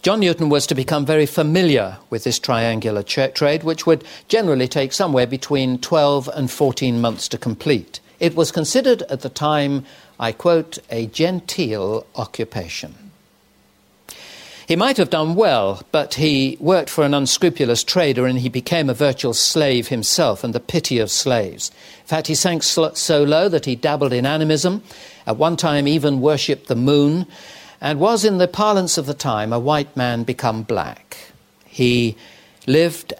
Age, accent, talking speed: 60-79, British, 170 wpm